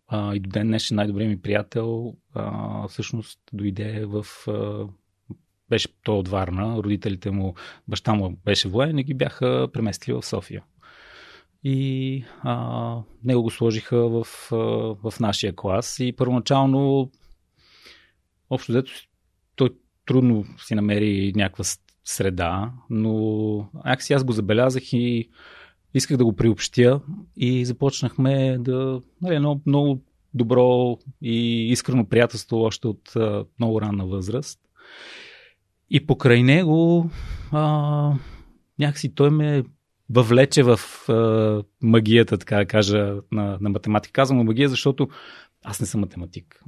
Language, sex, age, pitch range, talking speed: Bulgarian, male, 30-49, 105-130 Hz, 130 wpm